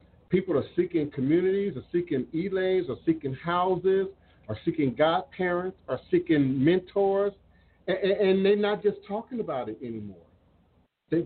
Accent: American